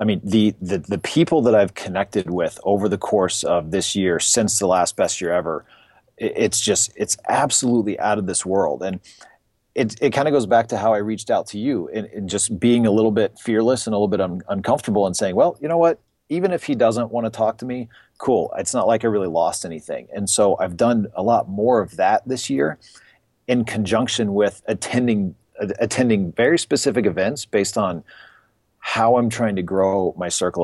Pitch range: 95-115 Hz